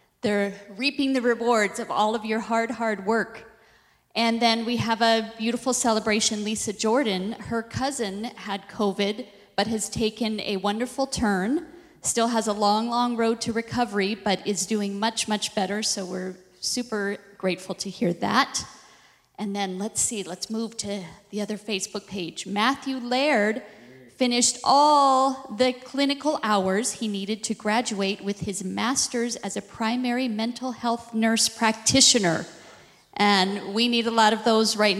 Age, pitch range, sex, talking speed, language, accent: 30-49, 200-230 Hz, female, 155 wpm, English, American